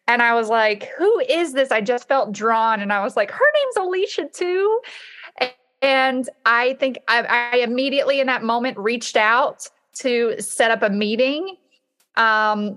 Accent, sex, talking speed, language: American, female, 170 wpm, English